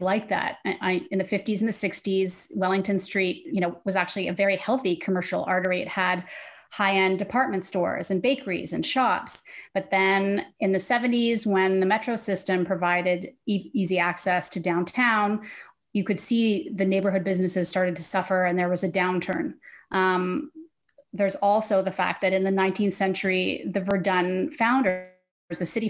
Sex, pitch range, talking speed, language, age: female, 185-205 Hz, 165 wpm, English, 30-49